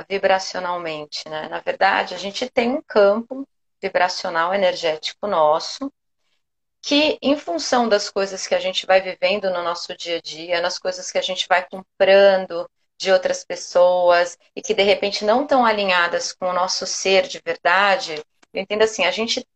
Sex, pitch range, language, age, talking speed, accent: female, 180-230 Hz, Portuguese, 30-49, 170 wpm, Brazilian